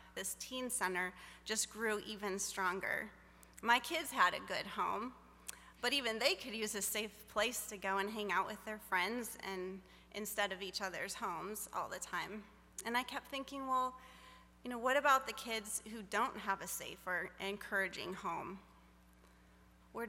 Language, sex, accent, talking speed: English, female, American, 175 wpm